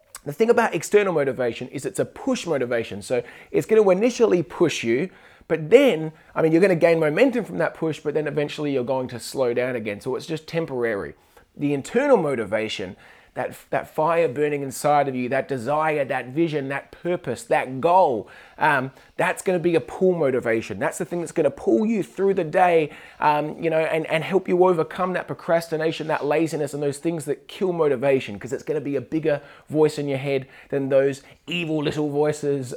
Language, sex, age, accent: English, male, 20-39, Australian